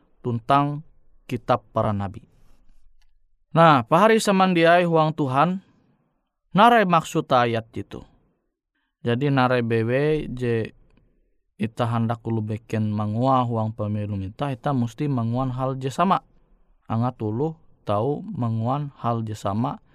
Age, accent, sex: 20-39, native, male